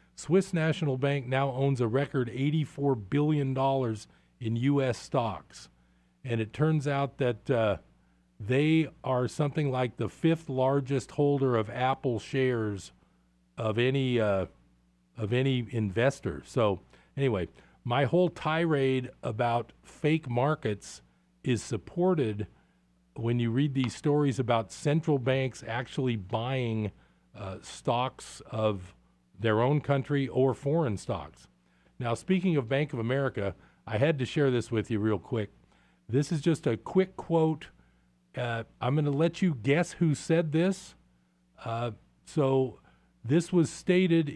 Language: English